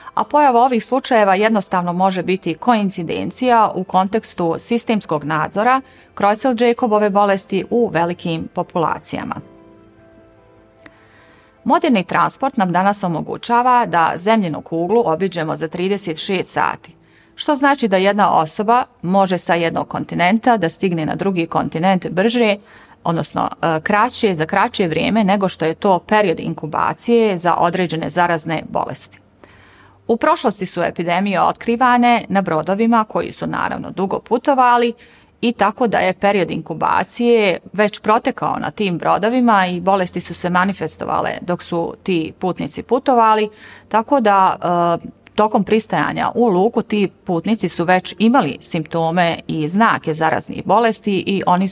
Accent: native